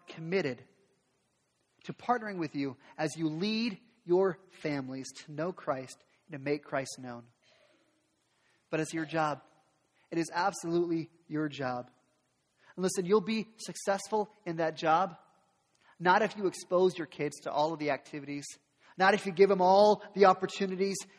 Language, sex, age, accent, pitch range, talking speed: English, male, 30-49, American, 155-195 Hz, 155 wpm